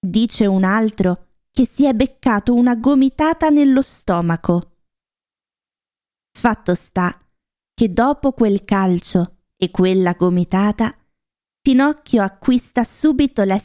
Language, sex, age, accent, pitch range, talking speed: Italian, female, 20-39, native, 190-245 Hz, 105 wpm